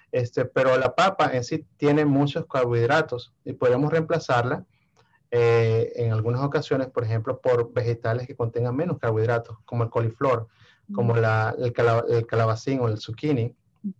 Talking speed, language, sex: 145 wpm, Spanish, male